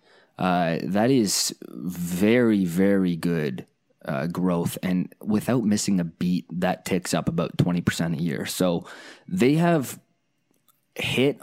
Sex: male